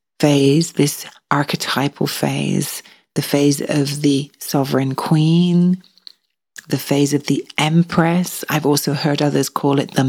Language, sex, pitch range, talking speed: English, female, 140-170 Hz, 130 wpm